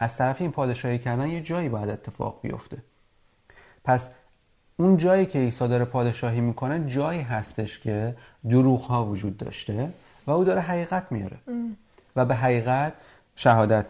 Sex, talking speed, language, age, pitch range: male, 150 wpm, Persian, 30-49, 110-145 Hz